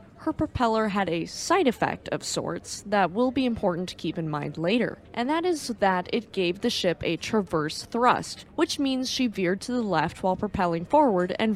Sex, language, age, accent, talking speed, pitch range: female, English, 20-39, American, 200 wpm, 175-250 Hz